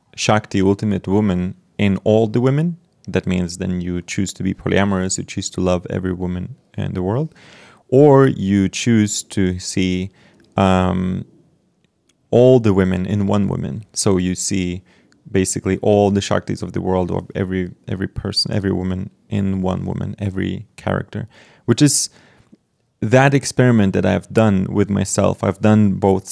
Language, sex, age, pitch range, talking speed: English, male, 30-49, 95-115 Hz, 155 wpm